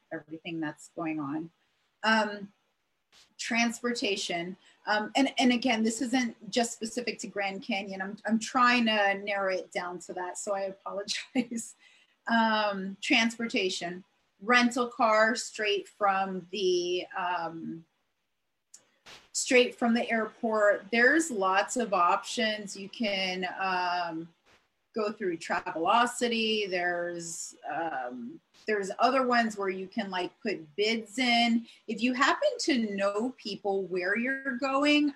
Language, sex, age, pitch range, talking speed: English, female, 30-49, 190-245 Hz, 125 wpm